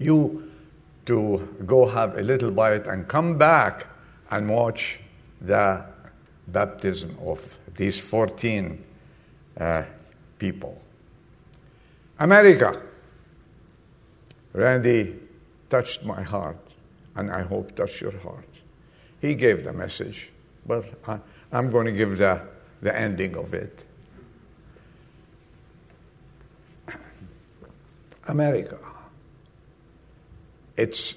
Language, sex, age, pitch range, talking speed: English, male, 70-89, 100-130 Hz, 90 wpm